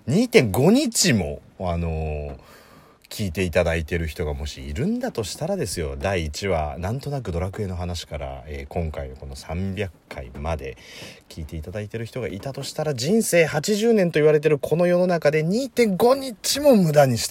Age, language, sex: 30-49, Japanese, male